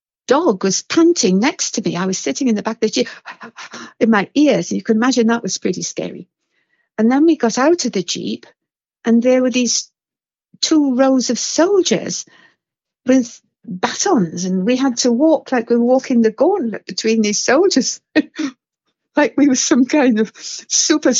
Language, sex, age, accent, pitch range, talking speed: English, female, 60-79, British, 210-280 Hz, 180 wpm